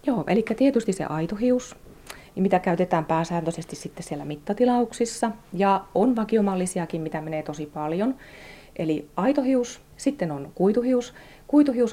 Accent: native